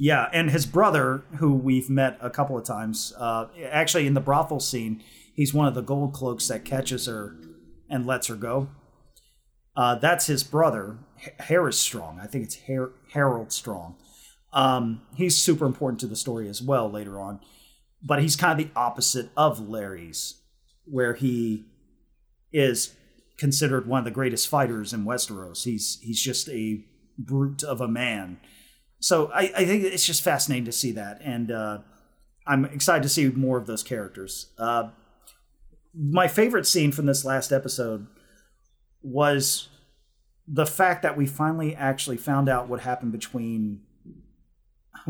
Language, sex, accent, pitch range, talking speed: English, male, American, 110-140 Hz, 160 wpm